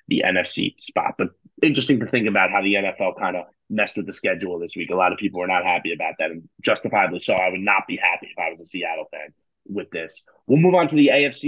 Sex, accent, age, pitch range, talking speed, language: male, American, 20-39, 105-125 Hz, 260 wpm, English